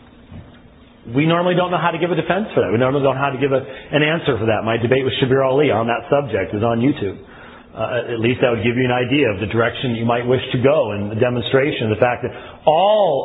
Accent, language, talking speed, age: American, English, 265 wpm, 40-59